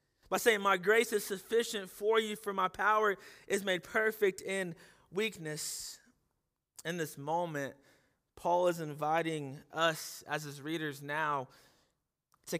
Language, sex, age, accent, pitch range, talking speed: English, male, 20-39, American, 145-185 Hz, 135 wpm